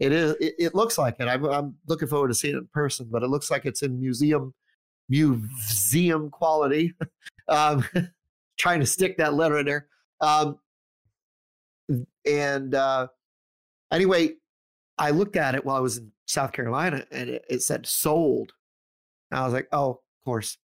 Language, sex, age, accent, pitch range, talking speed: English, male, 30-49, American, 125-160 Hz, 165 wpm